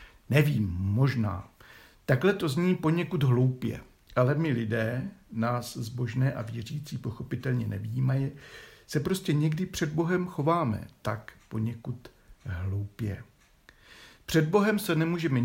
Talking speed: 115 wpm